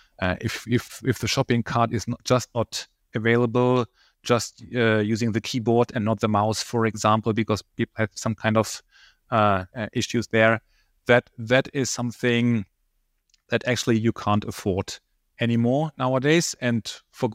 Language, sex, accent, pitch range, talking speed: English, male, German, 105-125 Hz, 155 wpm